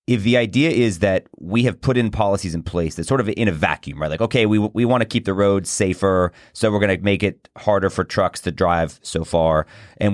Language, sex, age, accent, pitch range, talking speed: English, male, 30-49, American, 90-110 Hz, 255 wpm